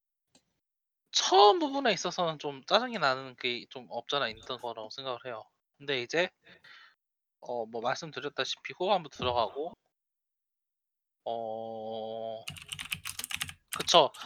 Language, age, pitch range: Korean, 20-39, 130-205 Hz